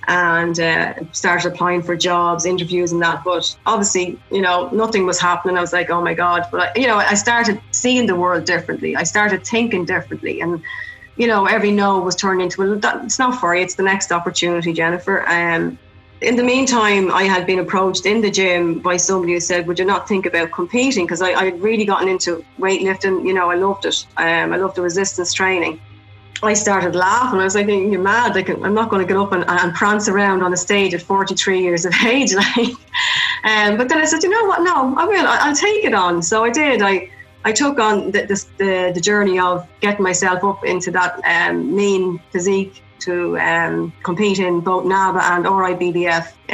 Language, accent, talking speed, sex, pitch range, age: English, Irish, 210 wpm, female, 175-210 Hz, 30-49